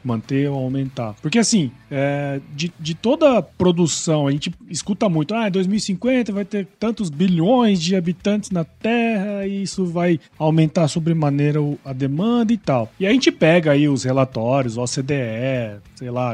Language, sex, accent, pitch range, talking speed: Portuguese, male, Brazilian, 145-215 Hz, 160 wpm